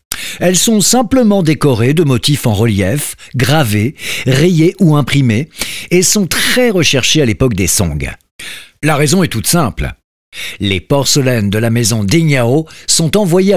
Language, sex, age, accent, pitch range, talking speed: French, male, 50-69, French, 115-175 Hz, 145 wpm